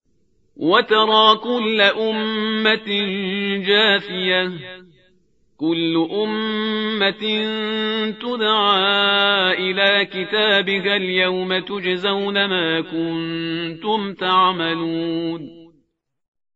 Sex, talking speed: male, 50 wpm